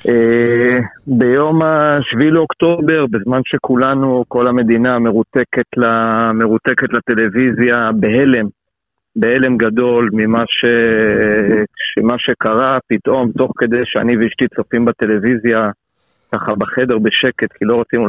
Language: Hebrew